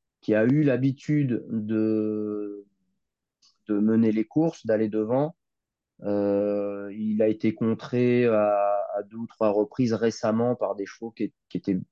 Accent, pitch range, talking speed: French, 100-115 Hz, 145 wpm